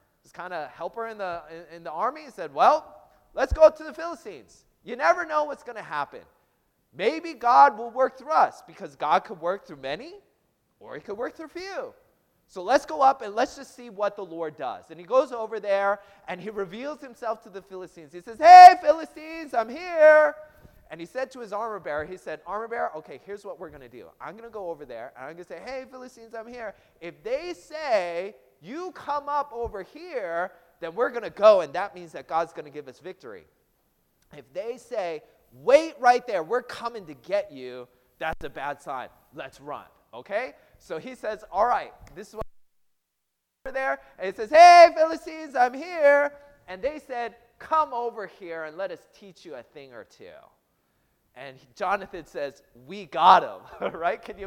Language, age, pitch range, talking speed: English, 30-49, 180-300 Hz, 205 wpm